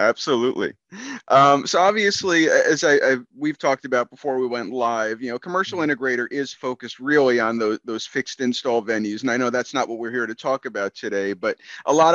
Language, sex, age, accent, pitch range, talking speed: English, male, 30-49, American, 115-145 Hz, 200 wpm